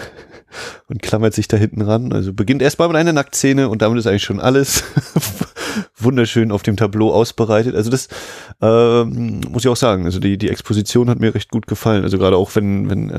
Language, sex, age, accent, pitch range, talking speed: German, male, 30-49, German, 100-120 Hz, 200 wpm